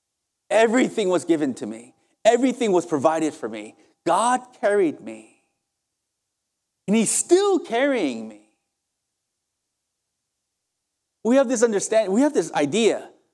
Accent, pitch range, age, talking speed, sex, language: American, 170-255 Hz, 30-49, 115 wpm, male, English